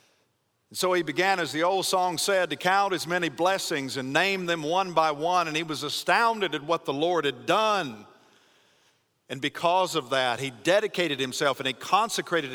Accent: American